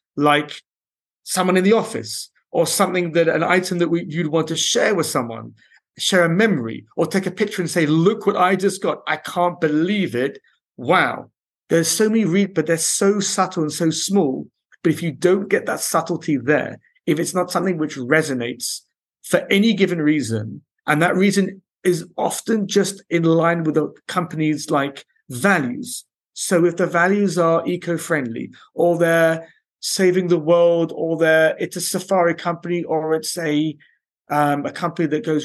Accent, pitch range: British, 160-185 Hz